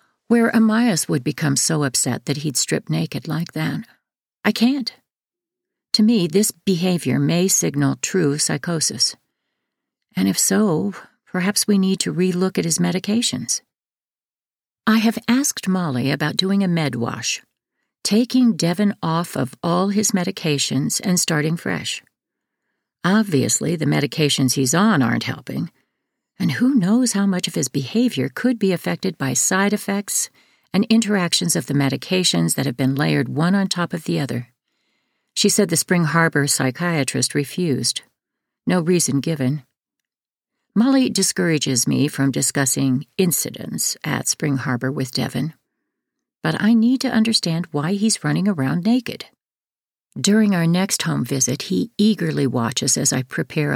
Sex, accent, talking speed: female, American, 145 wpm